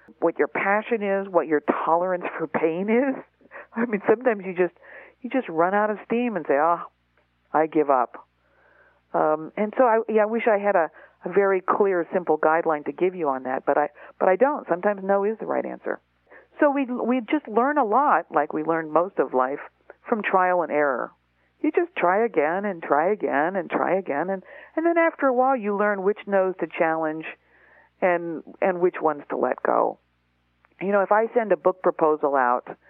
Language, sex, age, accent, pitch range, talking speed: English, female, 50-69, American, 155-235 Hz, 205 wpm